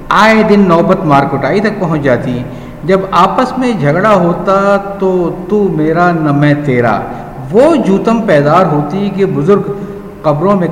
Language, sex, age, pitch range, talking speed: Urdu, male, 50-69, 150-195 Hz, 140 wpm